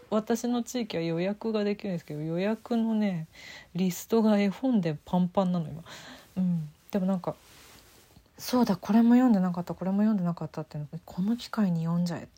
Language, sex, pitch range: Japanese, female, 155-225 Hz